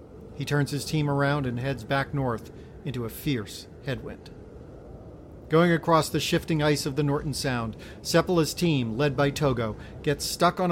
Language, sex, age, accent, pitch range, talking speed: English, male, 40-59, American, 130-160 Hz, 170 wpm